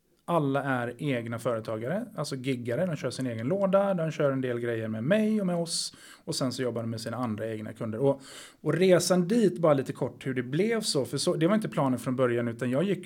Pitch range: 120-160 Hz